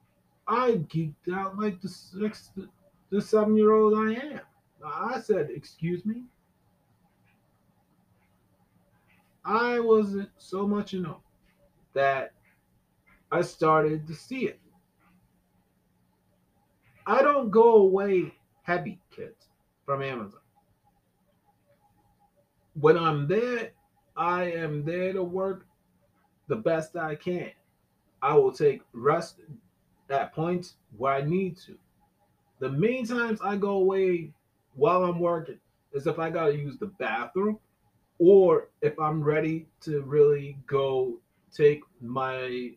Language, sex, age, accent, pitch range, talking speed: English, male, 30-49, American, 145-200 Hz, 120 wpm